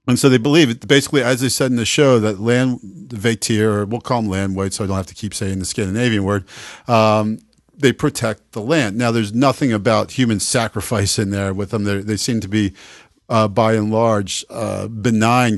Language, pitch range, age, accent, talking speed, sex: English, 105-130 Hz, 50-69, American, 215 wpm, male